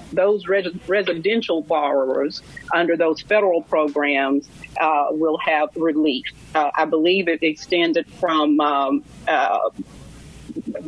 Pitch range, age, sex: 155-195 Hz, 40-59, female